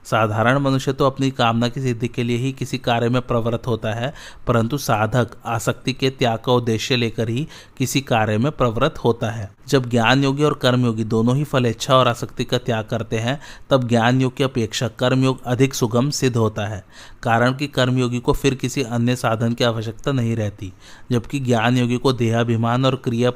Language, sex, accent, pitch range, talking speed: Hindi, male, native, 115-130 Hz, 195 wpm